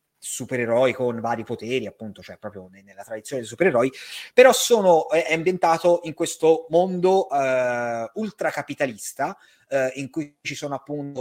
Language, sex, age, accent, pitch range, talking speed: Italian, male, 30-49, native, 120-160 Hz, 140 wpm